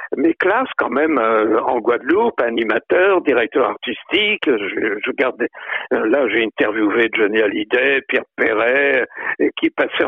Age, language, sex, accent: 60-79, French, male, French